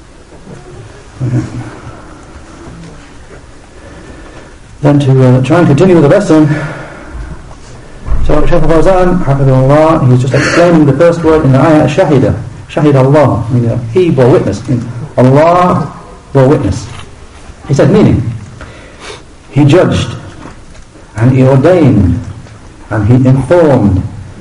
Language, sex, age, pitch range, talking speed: English, male, 60-79, 110-150 Hz, 110 wpm